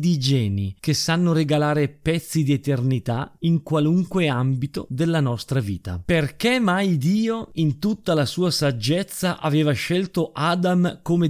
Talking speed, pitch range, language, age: 140 wpm, 145-175 Hz, Italian, 40-59